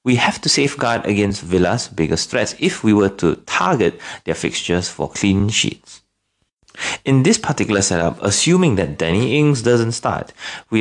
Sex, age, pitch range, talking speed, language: male, 30-49, 90-130 Hz, 160 wpm, English